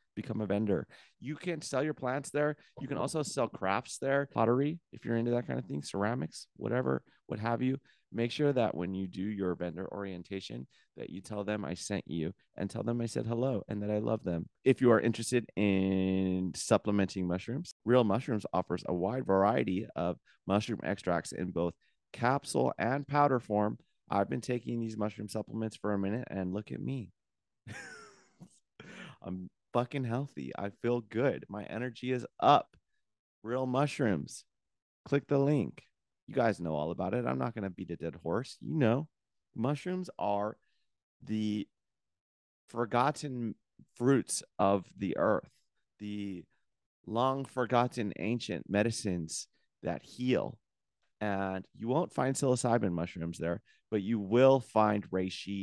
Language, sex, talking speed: English, male, 160 wpm